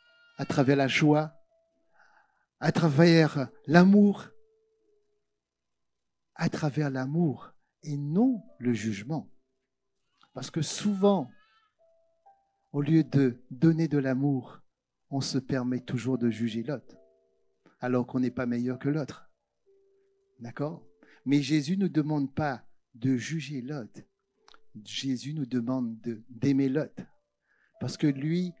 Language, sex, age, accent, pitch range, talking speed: French, male, 50-69, French, 140-220 Hz, 115 wpm